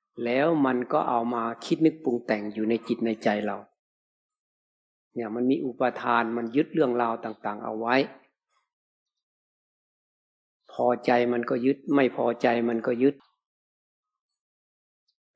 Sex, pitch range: male, 115-140 Hz